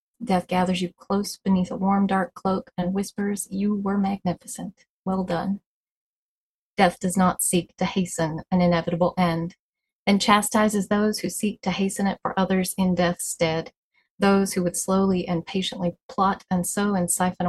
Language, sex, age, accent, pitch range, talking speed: English, female, 30-49, American, 180-200 Hz, 170 wpm